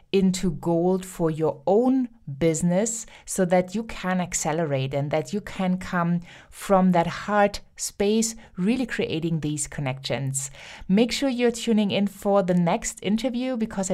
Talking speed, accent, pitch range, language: 145 wpm, German, 165-210 Hz, English